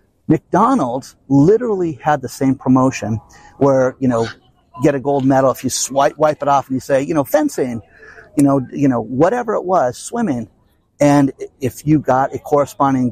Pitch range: 115-150 Hz